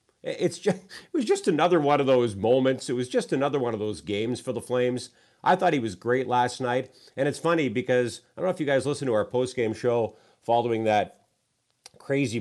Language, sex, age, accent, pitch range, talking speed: English, male, 50-69, American, 115-155 Hz, 220 wpm